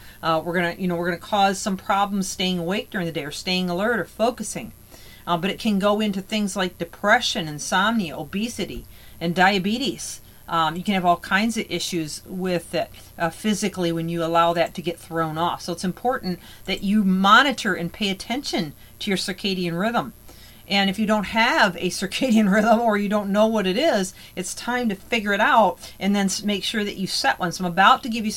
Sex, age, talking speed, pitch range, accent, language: female, 40-59, 210 wpm, 175-210 Hz, American, English